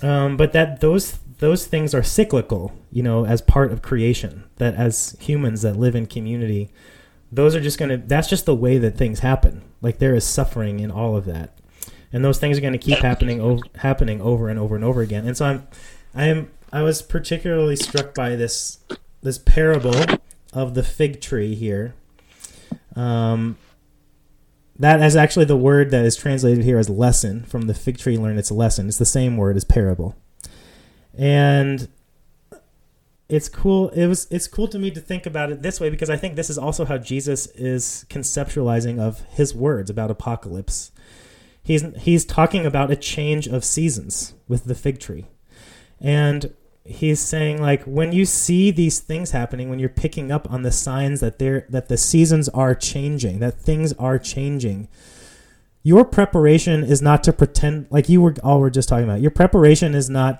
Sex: male